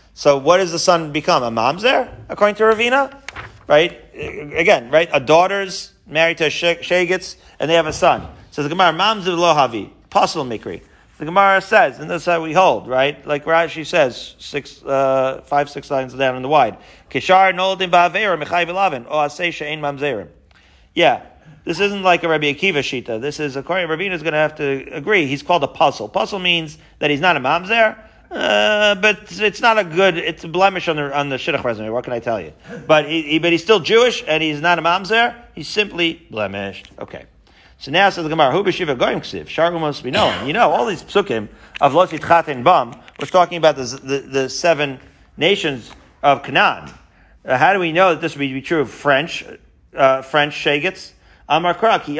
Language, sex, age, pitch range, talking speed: English, male, 40-59, 140-185 Hz, 190 wpm